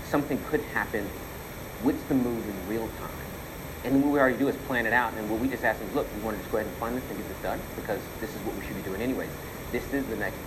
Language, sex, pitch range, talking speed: English, male, 95-110 Hz, 290 wpm